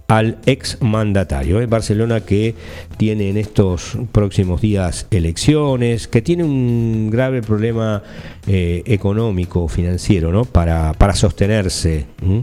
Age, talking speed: 50-69, 110 wpm